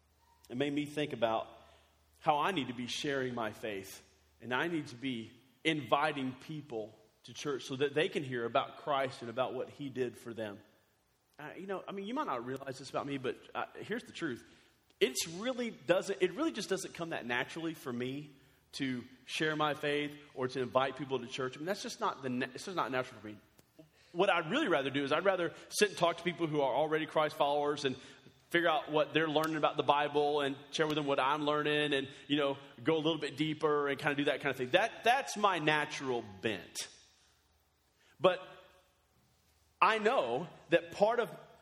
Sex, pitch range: male, 120-170 Hz